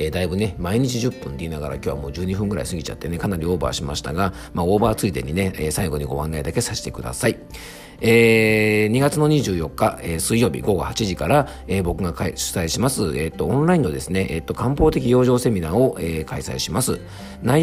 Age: 50-69